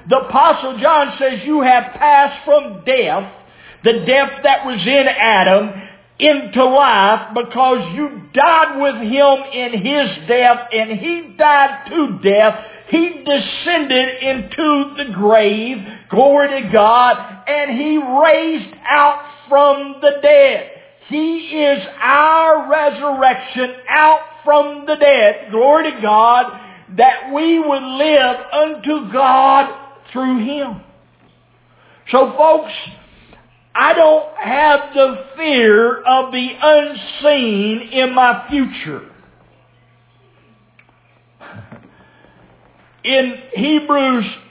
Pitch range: 215-290 Hz